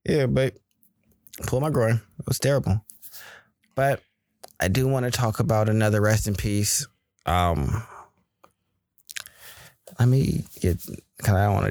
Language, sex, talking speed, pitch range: English, male, 155 wpm, 90-110 Hz